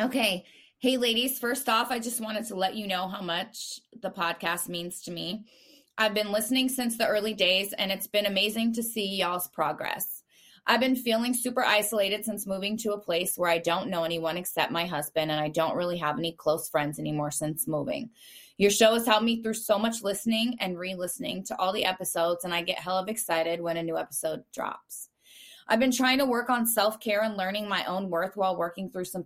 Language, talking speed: English, 215 wpm